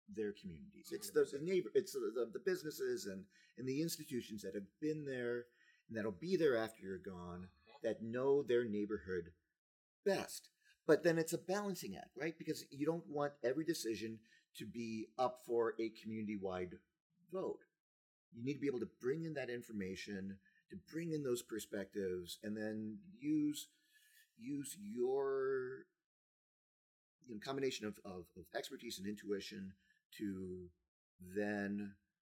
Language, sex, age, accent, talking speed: English, male, 40-59, American, 145 wpm